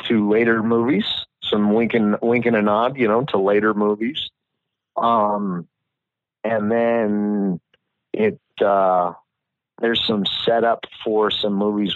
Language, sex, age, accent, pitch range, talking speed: English, male, 40-59, American, 105-120 Hz, 135 wpm